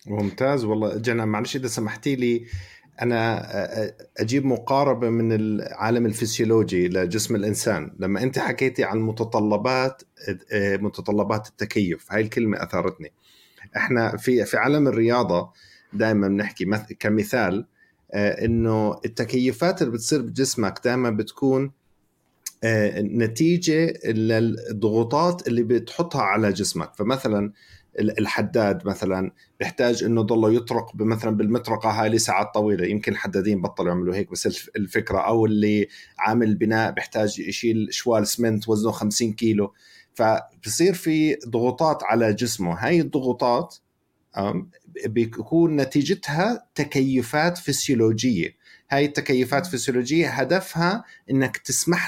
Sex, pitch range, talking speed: male, 105-135 Hz, 105 wpm